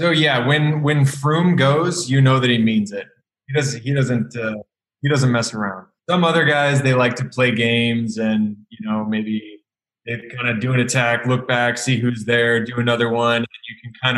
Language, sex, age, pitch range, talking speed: English, male, 20-39, 120-150 Hz, 215 wpm